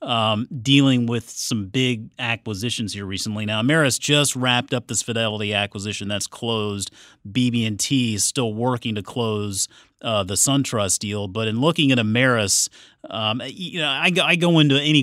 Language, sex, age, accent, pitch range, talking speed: English, male, 30-49, American, 110-135 Hz, 155 wpm